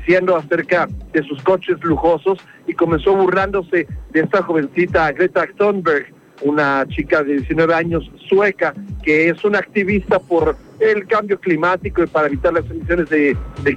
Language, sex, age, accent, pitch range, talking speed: Spanish, male, 50-69, Mexican, 155-195 Hz, 155 wpm